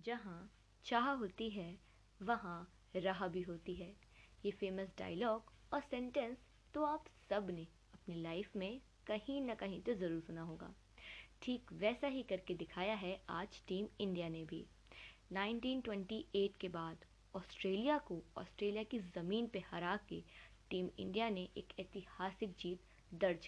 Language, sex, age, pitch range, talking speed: Hindi, female, 20-39, 175-220 Hz, 145 wpm